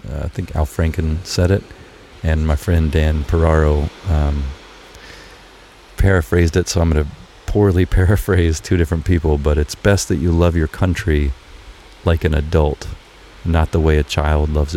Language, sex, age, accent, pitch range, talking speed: English, male, 40-59, American, 75-90 Hz, 165 wpm